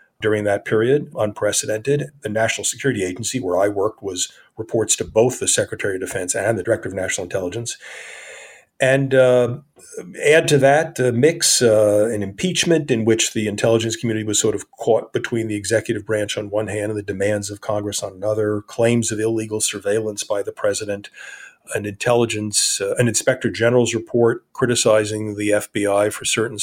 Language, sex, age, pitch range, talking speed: English, male, 40-59, 105-125 Hz, 170 wpm